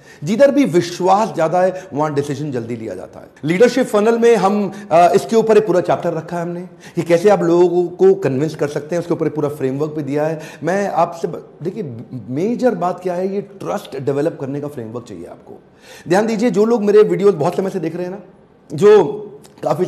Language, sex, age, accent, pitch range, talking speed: Hindi, male, 40-59, native, 150-190 Hz, 210 wpm